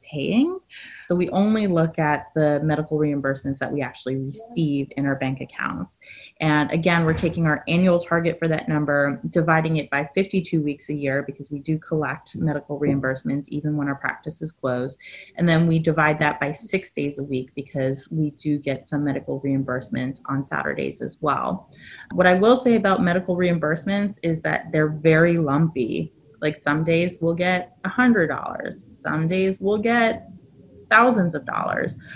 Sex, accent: female, American